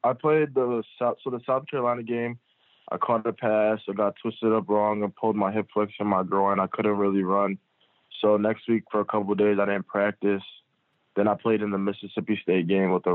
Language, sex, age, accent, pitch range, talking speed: English, male, 20-39, American, 95-105 Hz, 235 wpm